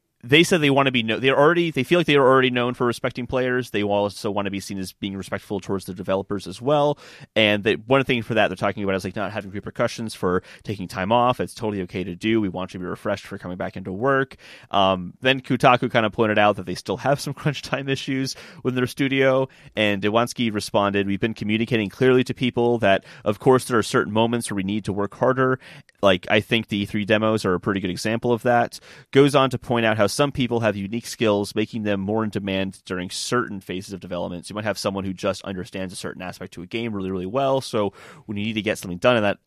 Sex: male